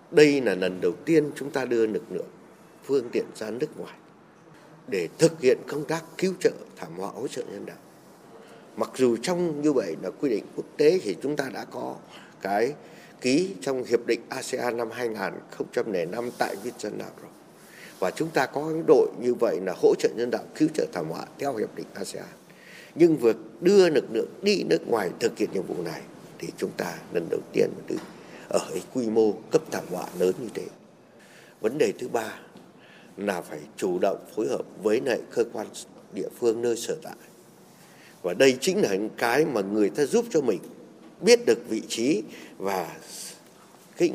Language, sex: Vietnamese, male